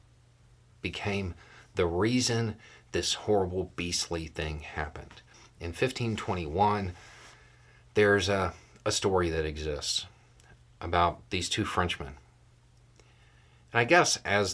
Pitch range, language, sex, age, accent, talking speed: 85-120 Hz, English, male, 40-59, American, 100 wpm